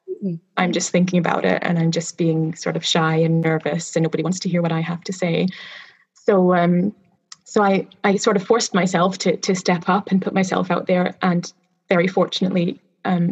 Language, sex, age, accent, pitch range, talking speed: English, female, 20-39, British, 180-215 Hz, 205 wpm